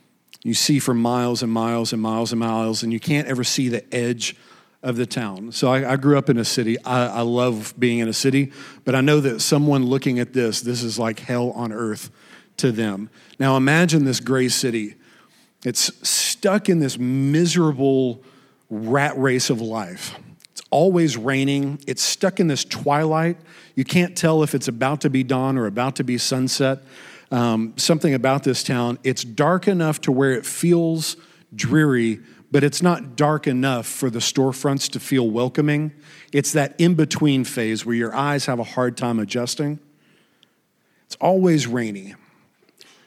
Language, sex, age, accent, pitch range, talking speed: English, male, 40-59, American, 120-150 Hz, 175 wpm